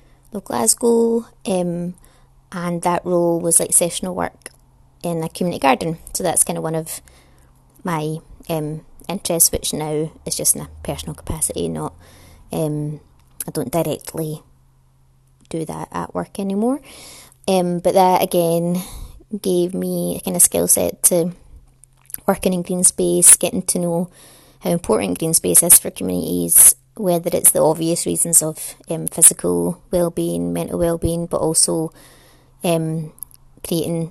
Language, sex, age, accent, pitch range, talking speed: English, female, 20-39, British, 130-180 Hz, 150 wpm